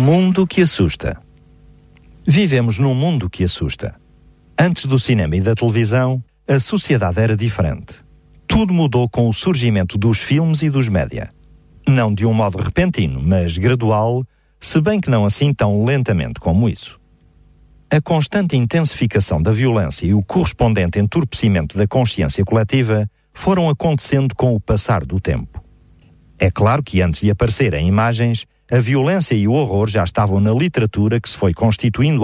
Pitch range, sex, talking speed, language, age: 95-130 Hz, male, 155 wpm, Portuguese, 50-69